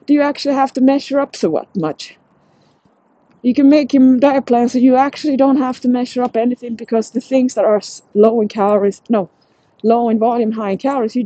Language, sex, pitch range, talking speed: English, female, 210-270 Hz, 215 wpm